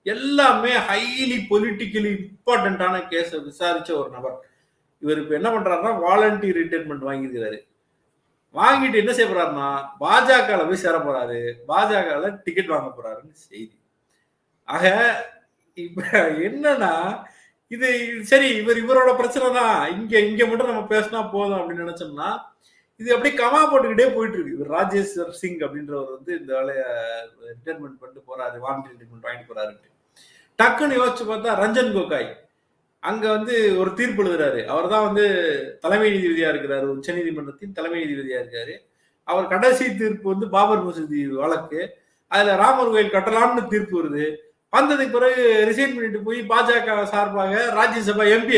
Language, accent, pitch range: Tamil, native, 160-235 Hz